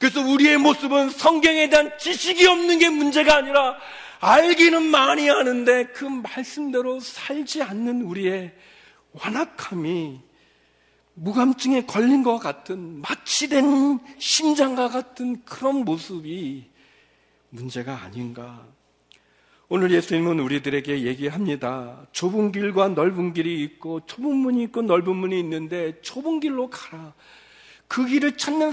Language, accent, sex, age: Korean, native, male, 40-59